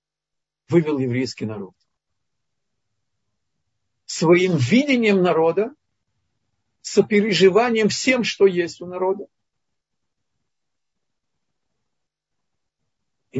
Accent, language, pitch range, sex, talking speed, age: native, Russian, 125-205 Hz, male, 60 wpm, 50-69